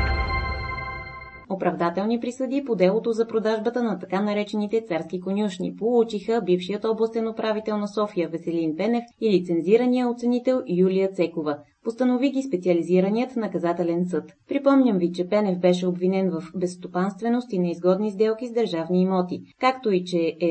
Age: 20-39